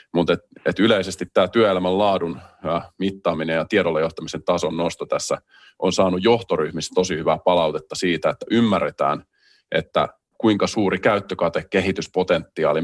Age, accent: 30-49, native